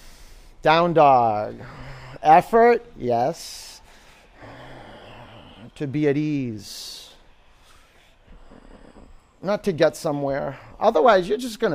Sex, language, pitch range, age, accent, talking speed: male, English, 120-200 Hz, 30-49, American, 80 wpm